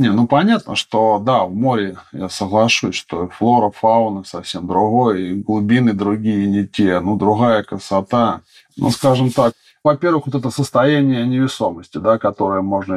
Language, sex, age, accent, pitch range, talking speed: Russian, male, 20-39, native, 95-115 Hz, 150 wpm